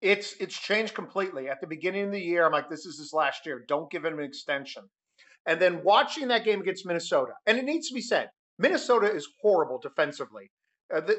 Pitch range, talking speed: 160-230 Hz, 215 wpm